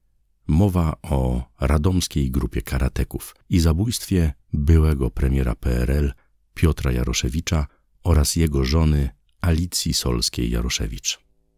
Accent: native